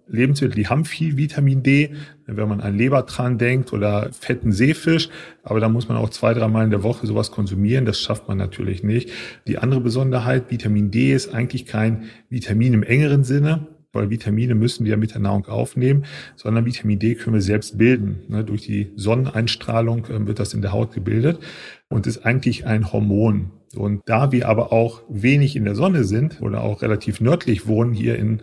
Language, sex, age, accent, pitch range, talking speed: German, male, 40-59, German, 110-130 Hz, 190 wpm